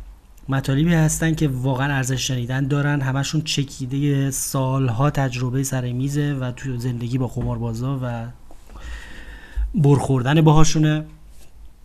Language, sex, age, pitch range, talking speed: Persian, male, 30-49, 125-145 Hz, 105 wpm